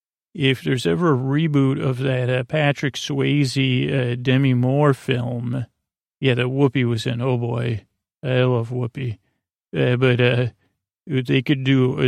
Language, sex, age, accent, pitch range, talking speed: English, male, 40-59, American, 125-140 Hz, 155 wpm